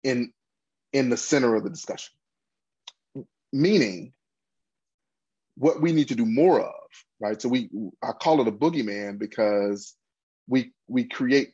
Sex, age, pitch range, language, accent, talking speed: male, 30-49, 105-130 Hz, English, American, 140 wpm